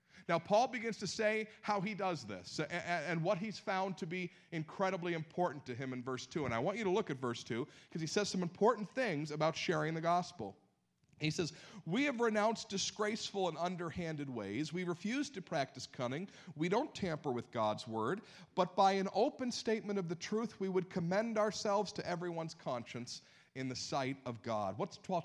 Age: 40-59